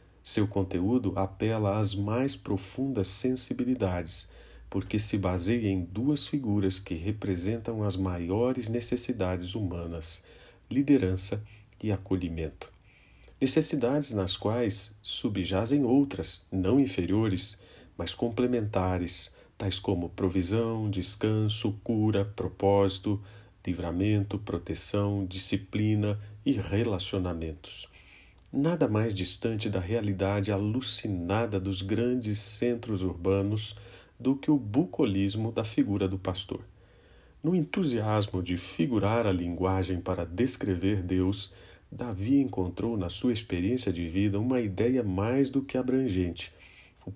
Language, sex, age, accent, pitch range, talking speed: Portuguese, male, 50-69, Brazilian, 95-115 Hz, 105 wpm